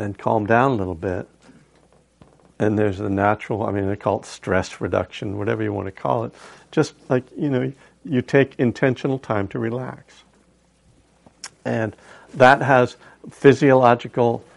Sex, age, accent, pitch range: male, 70-89, American, 105-140 Hz